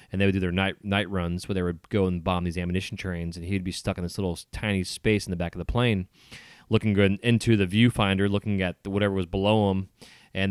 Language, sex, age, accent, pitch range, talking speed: English, male, 30-49, American, 90-110 Hz, 250 wpm